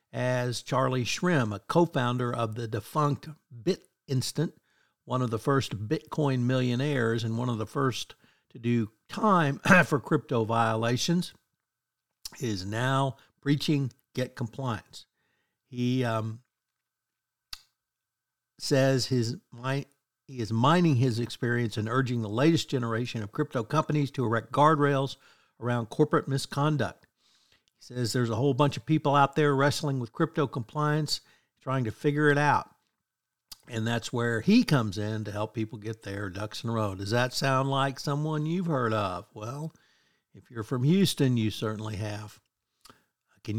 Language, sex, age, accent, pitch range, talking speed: English, male, 60-79, American, 115-145 Hz, 145 wpm